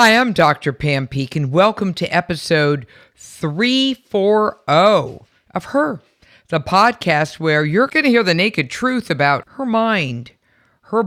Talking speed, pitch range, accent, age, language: 135 wpm, 135-185 Hz, American, 50-69, English